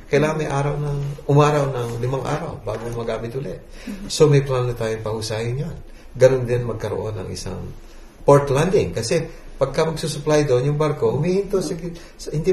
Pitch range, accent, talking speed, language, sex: 105-145 Hz, native, 160 wpm, Filipino, male